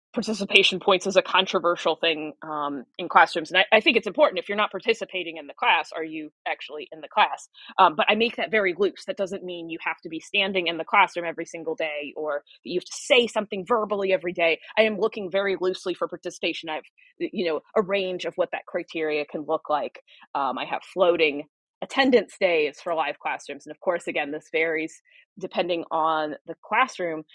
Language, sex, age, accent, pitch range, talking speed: English, female, 20-39, American, 160-210 Hz, 210 wpm